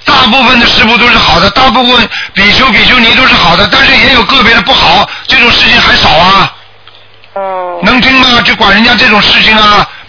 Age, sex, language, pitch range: 50-69, male, Chinese, 205-245 Hz